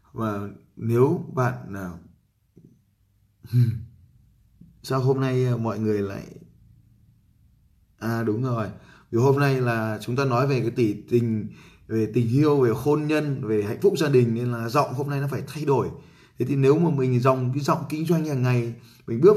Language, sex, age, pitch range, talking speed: Vietnamese, male, 20-39, 110-135 Hz, 185 wpm